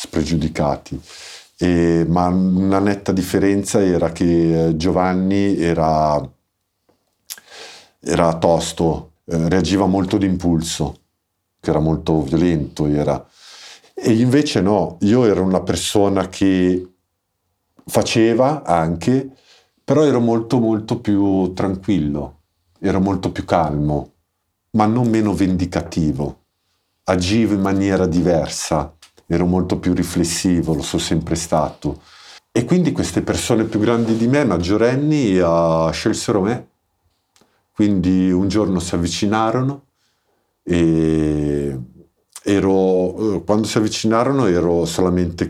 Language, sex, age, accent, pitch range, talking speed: Italian, male, 50-69, native, 80-100 Hz, 105 wpm